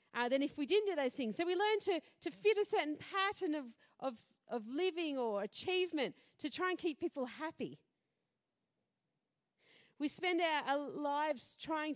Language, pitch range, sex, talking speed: English, 290-390 Hz, female, 175 wpm